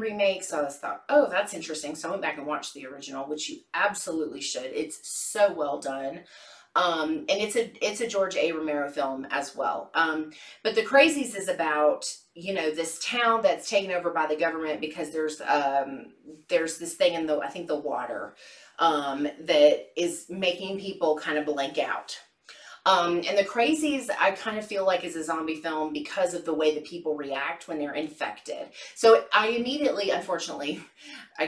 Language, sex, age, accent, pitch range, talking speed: English, female, 30-49, American, 150-195 Hz, 195 wpm